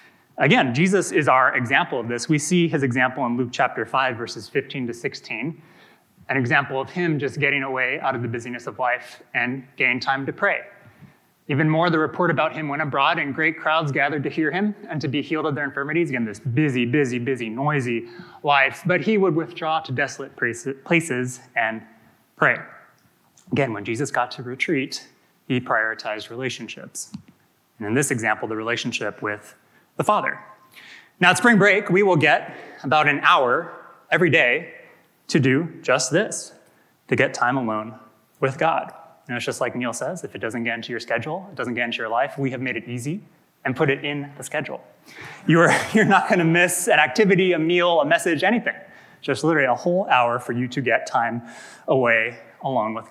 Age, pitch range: 20-39, 120-160 Hz